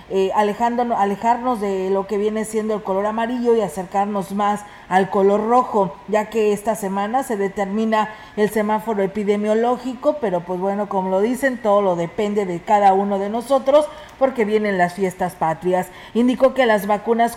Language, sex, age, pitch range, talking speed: Spanish, female, 40-59, 200-230 Hz, 165 wpm